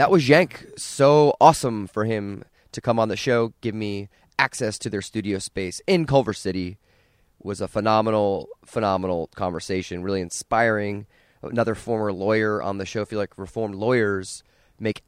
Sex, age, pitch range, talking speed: male, 20-39, 95-115 Hz, 165 wpm